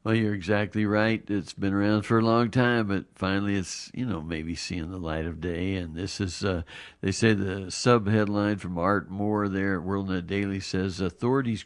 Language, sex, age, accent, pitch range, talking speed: English, male, 60-79, American, 85-110 Hz, 200 wpm